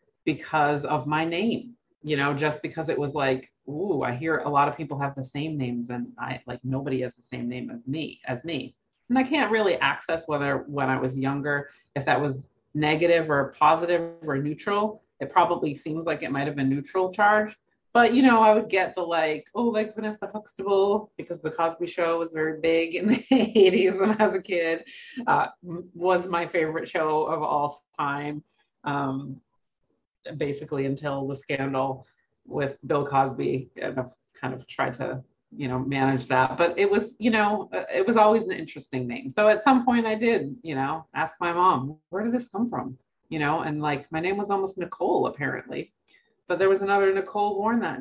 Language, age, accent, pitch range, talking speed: English, 30-49, American, 140-205 Hz, 200 wpm